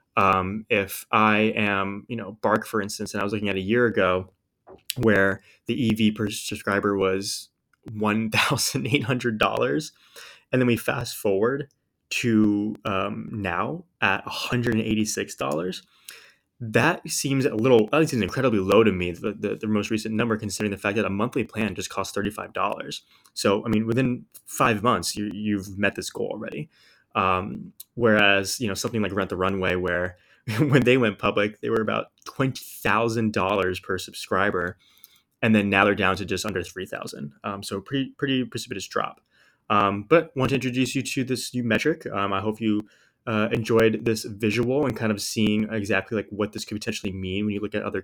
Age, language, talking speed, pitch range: 20-39, English, 175 wpm, 100-120 Hz